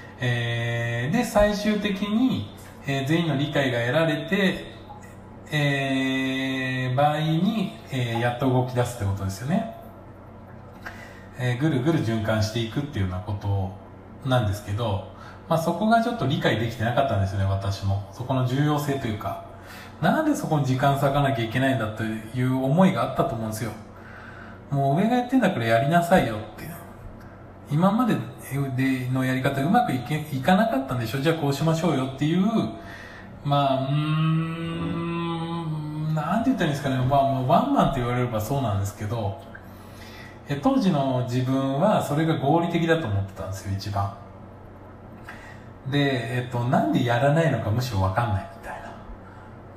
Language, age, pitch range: Japanese, 20-39, 110-150 Hz